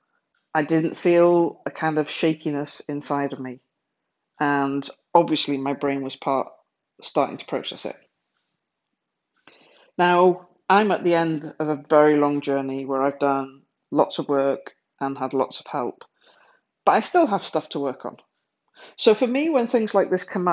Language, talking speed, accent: English, 165 wpm, British